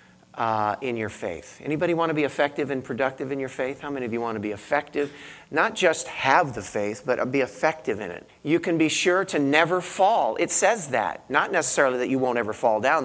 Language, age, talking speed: English, 40-59, 230 wpm